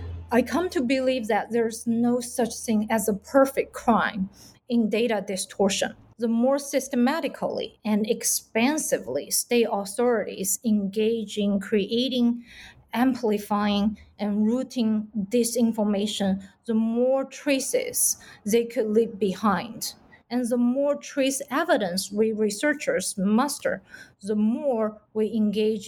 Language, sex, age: English, female, 30-49